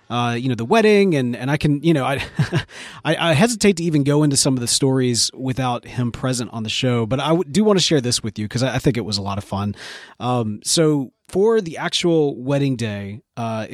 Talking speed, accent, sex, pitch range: 245 wpm, American, male, 125-165 Hz